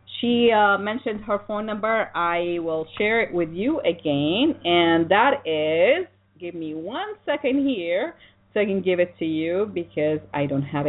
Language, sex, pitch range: English, female, 165-230 Hz